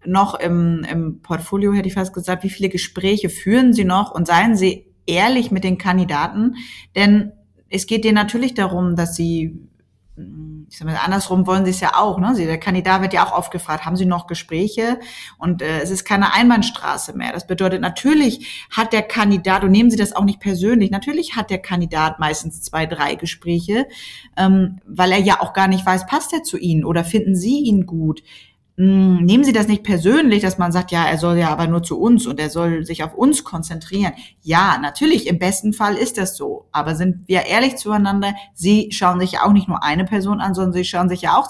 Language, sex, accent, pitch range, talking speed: German, female, German, 170-210 Hz, 215 wpm